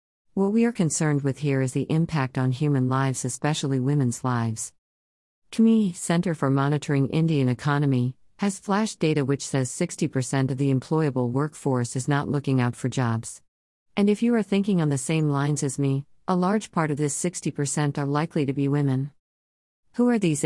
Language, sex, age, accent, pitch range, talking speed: English, female, 50-69, American, 125-155 Hz, 180 wpm